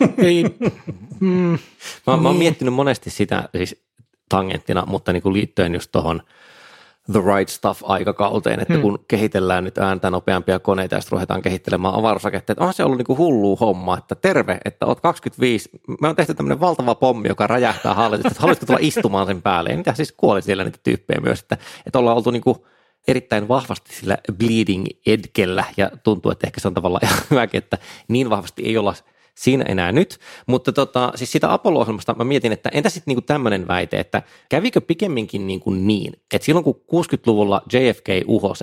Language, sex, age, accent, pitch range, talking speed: Finnish, male, 20-39, native, 95-125 Hz, 175 wpm